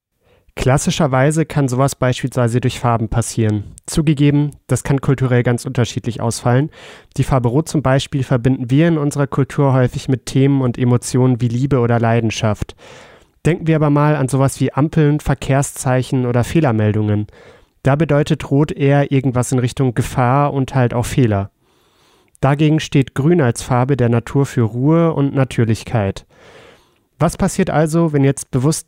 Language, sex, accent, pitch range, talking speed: German, male, German, 120-145 Hz, 150 wpm